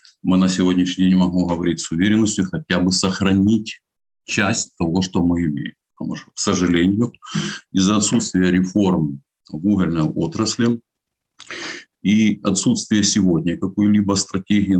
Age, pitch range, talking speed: 50-69, 80-100 Hz, 120 wpm